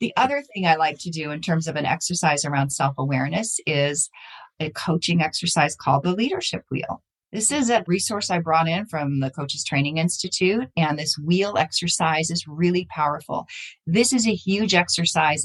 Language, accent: English, American